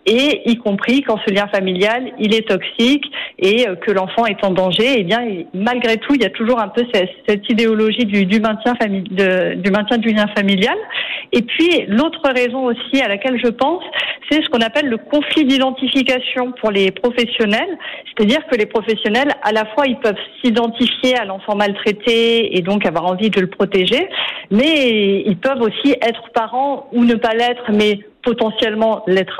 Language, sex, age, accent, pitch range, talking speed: French, female, 40-59, French, 200-250 Hz, 190 wpm